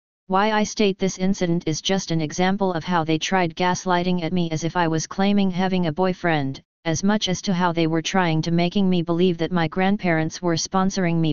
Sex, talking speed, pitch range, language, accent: female, 220 wpm, 160-190 Hz, English, American